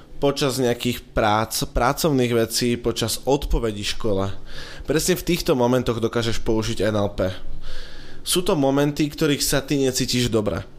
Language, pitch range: Slovak, 110-135 Hz